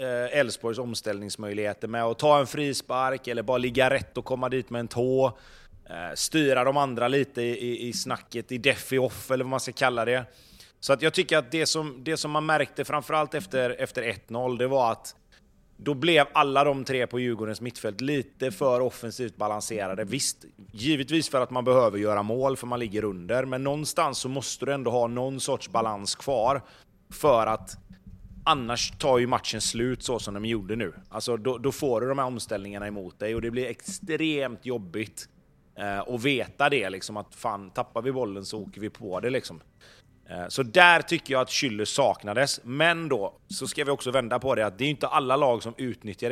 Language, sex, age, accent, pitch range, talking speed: Swedish, male, 30-49, native, 110-140 Hz, 205 wpm